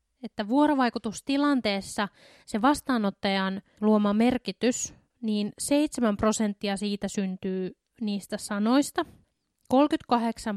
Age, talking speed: 20-39, 80 wpm